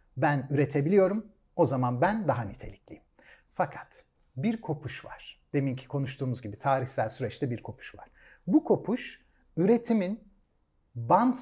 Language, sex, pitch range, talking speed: Turkish, male, 130-190 Hz, 120 wpm